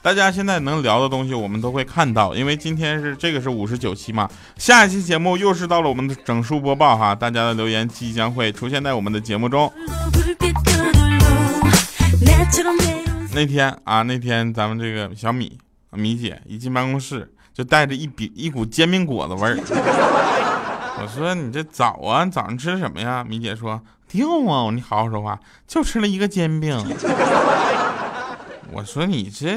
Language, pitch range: Chinese, 110-180 Hz